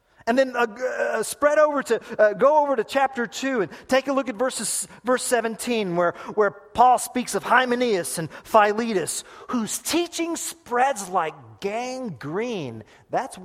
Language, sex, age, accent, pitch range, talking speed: English, male, 40-59, American, 170-280 Hz, 150 wpm